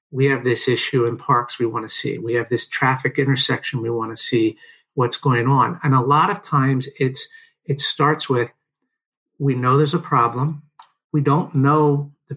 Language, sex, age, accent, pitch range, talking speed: English, male, 50-69, American, 130-150 Hz, 185 wpm